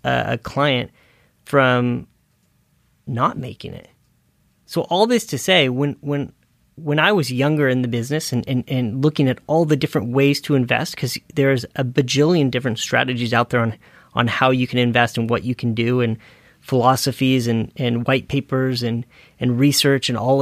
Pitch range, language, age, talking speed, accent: 125-150 Hz, English, 30-49, 180 wpm, American